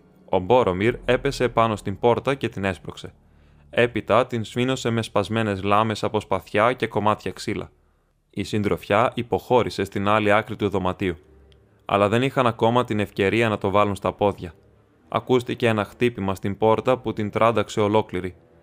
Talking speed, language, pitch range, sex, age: 155 wpm, Greek, 100-115 Hz, male, 20-39